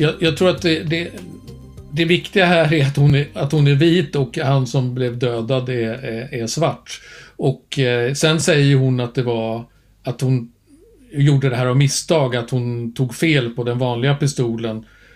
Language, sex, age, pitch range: Swedish, male, 50-69, 120-140 Hz